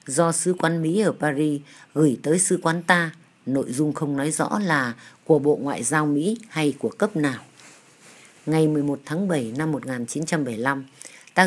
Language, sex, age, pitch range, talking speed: Vietnamese, female, 20-39, 135-170 Hz, 175 wpm